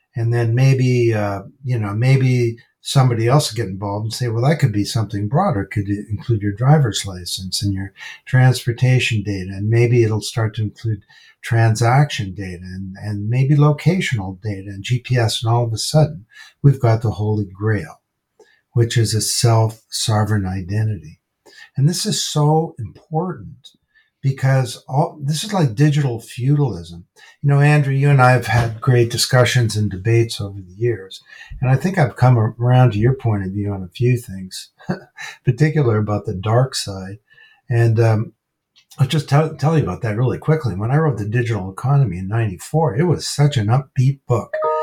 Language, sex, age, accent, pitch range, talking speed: English, male, 60-79, American, 105-135 Hz, 180 wpm